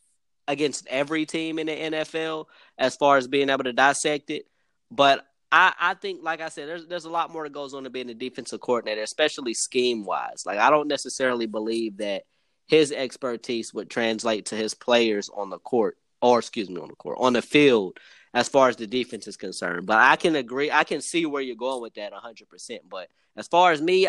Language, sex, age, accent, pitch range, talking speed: English, male, 20-39, American, 120-155 Hz, 220 wpm